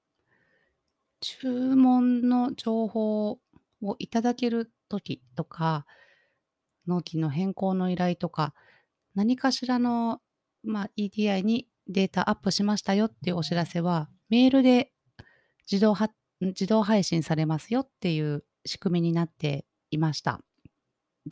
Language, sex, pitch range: Japanese, female, 155-225 Hz